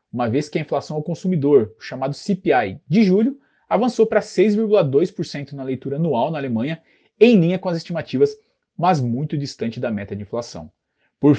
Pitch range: 140-210 Hz